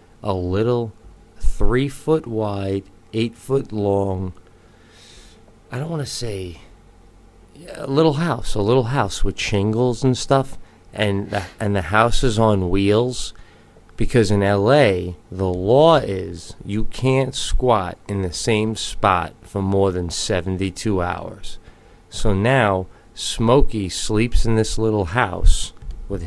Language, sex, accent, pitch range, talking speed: English, male, American, 95-115 Hz, 135 wpm